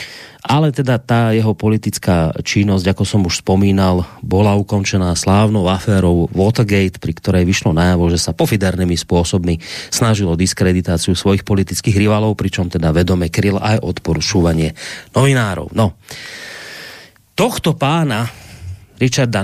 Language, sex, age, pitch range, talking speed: Slovak, male, 30-49, 95-115 Hz, 120 wpm